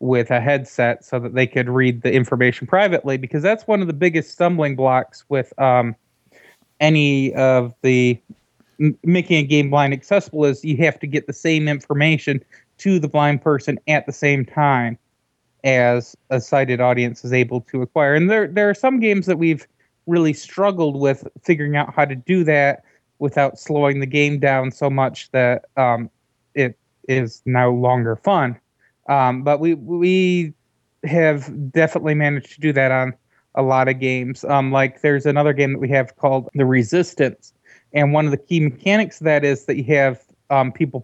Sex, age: male, 30-49